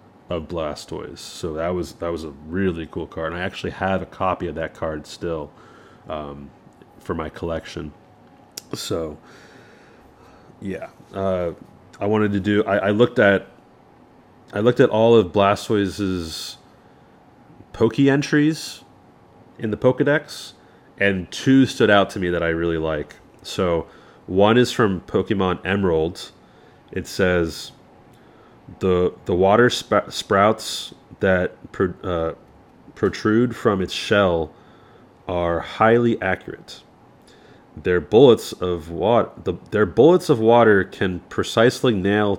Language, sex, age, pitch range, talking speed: English, male, 30-49, 85-110 Hz, 130 wpm